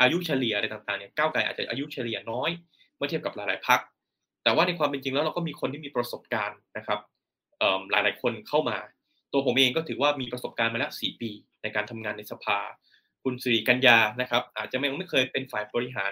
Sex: male